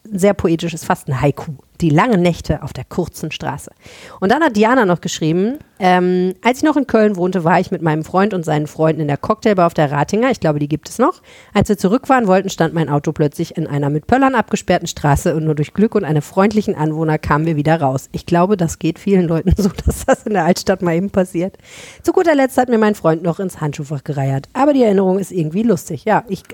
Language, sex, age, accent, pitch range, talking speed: German, female, 40-59, German, 165-210 Hz, 235 wpm